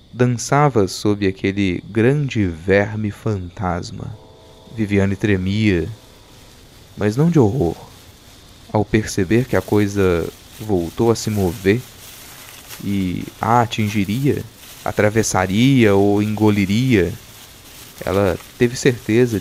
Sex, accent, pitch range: male, Brazilian, 95-115 Hz